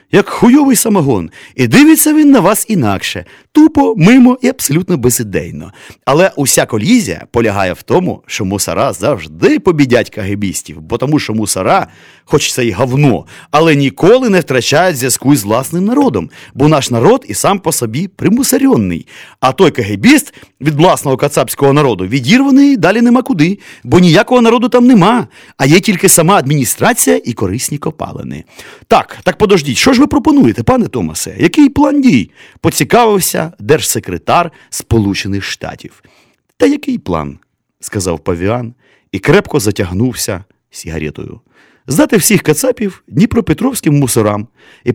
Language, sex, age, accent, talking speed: Ukrainian, male, 30-49, native, 140 wpm